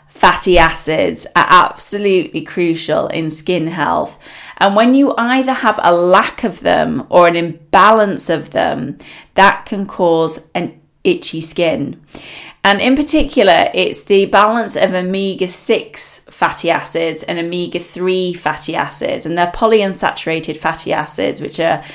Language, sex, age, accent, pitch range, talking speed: English, female, 20-39, British, 165-220 Hz, 135 wpm